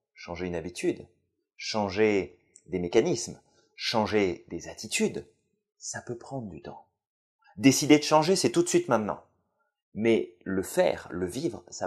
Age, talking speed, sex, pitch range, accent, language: 30-49, 140 wpm, male, 100-140 Hz, French, French